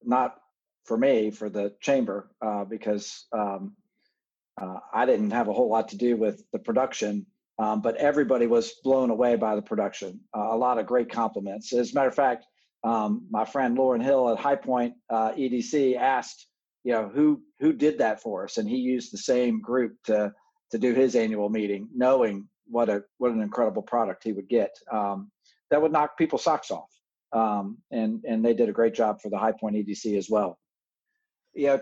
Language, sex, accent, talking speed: English, male, American, 195 wpm